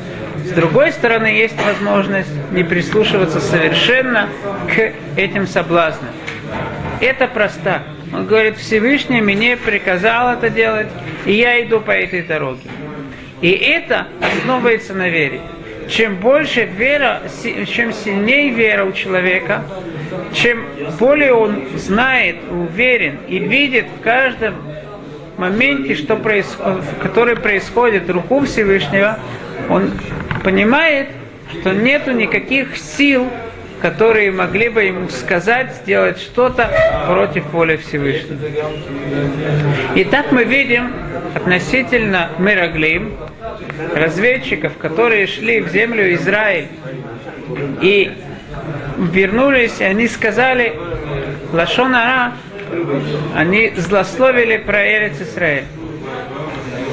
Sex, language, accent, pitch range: male, Russian, native, 165-235 Hz